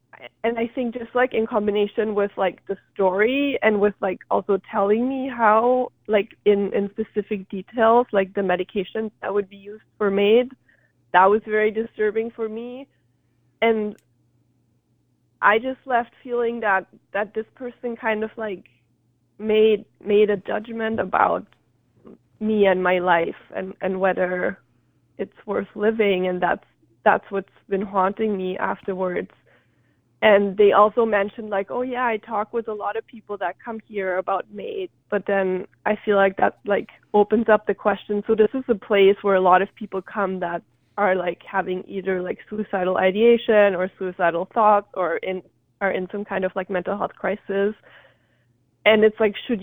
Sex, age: female, 20-39